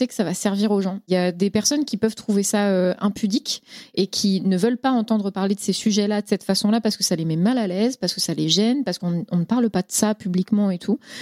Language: French